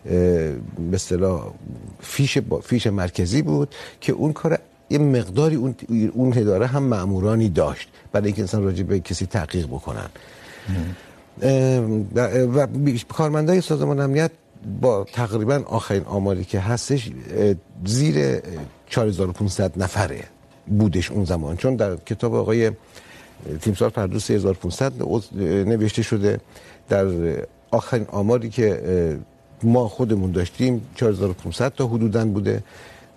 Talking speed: 110 wpm